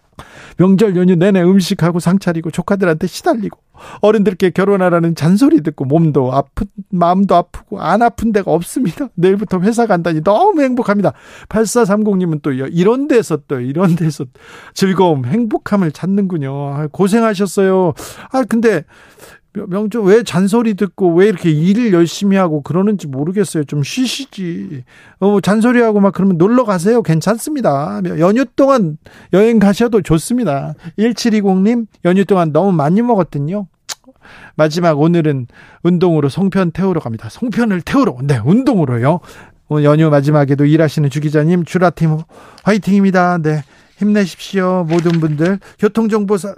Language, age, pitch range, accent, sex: Korean, 40-59, 160-210 Hz, native, male